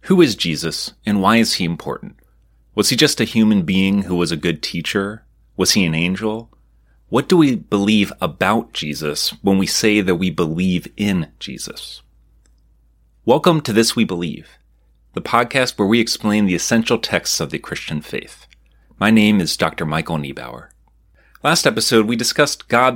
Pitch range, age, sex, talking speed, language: 75-110 Hz, 30-49, male, 170 wpm, English